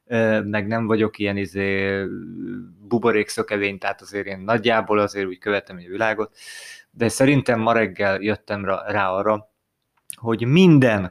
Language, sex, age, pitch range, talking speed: Hungarian, male, 20-39, 110-125 Hz, 130 wpm